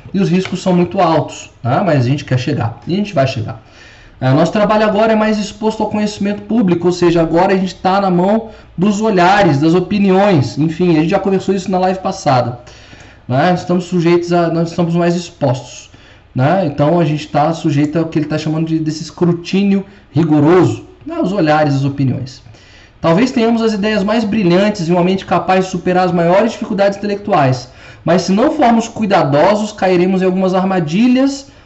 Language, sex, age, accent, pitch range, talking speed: Portuguese, male, 20-39, Brazilian, 145-195 Hz, 190 wpm